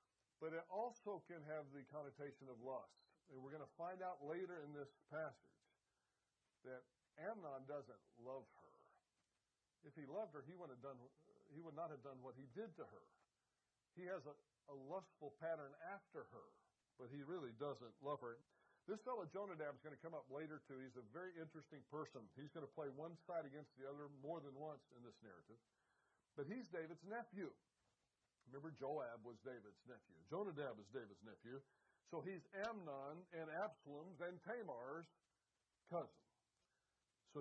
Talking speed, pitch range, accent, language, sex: 170 wpm, 140-180 Hz, American, English, male